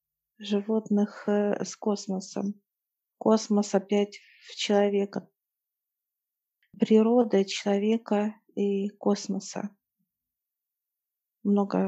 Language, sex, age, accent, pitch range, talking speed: Russian, female, 40-59, native, 195-210 Hz, 60 wpm